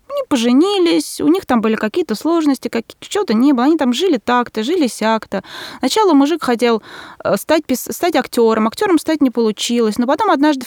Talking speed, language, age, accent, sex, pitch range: 170 wpm, Russian, 20-39, native, female, 225-290 Hz